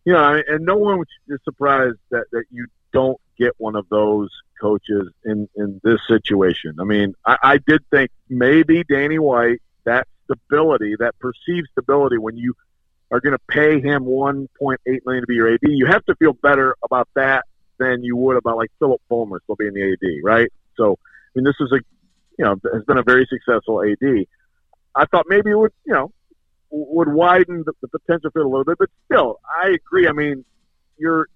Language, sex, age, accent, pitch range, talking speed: English, male, 50-69, American, 120-155 Hz, 205 wpm